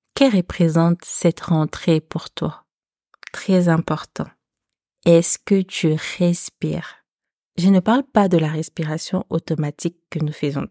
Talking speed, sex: 130 wpm, female